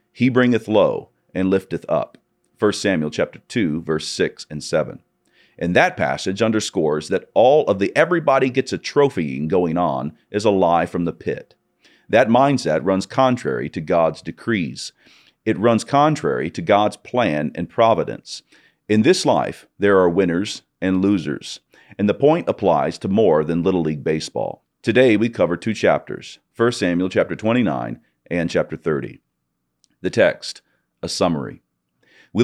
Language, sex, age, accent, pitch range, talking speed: English, male, 40-59, American, 80-115 Hz, 155 wpm